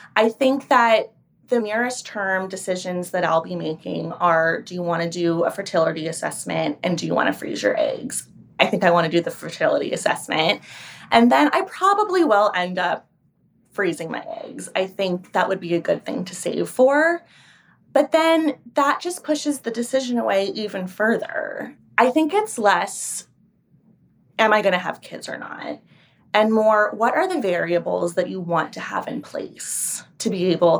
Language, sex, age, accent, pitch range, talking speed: English, female, 20-39, American, 175-235 Hz, 185 wpm